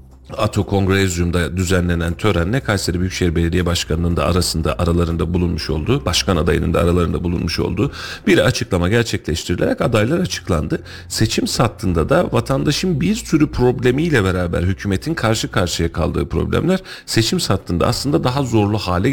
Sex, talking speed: male, 135 wpm